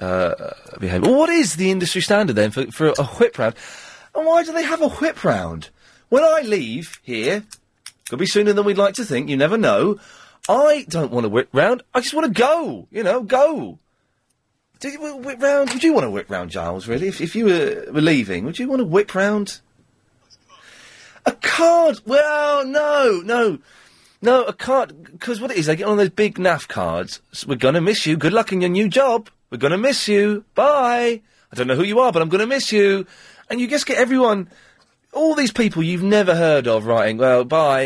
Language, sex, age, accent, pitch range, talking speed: English, male, 30-49, British, 160-265 Hz, 225 wpm